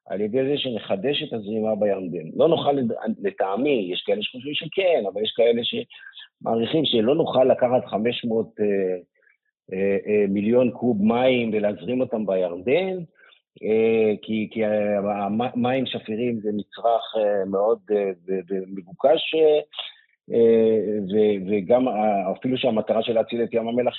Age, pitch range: 50-69, 105-130 Hz